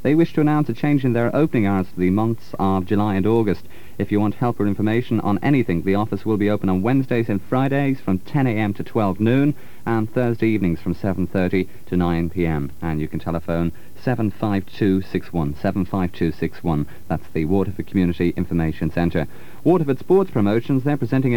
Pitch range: 90-125 Hz